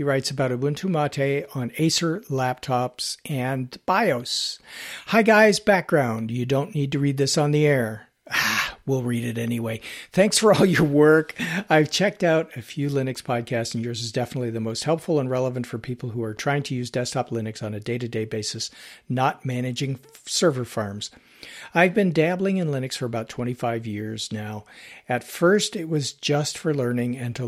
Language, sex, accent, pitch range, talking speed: English, male, American, 120-150 Hz, 180 wpm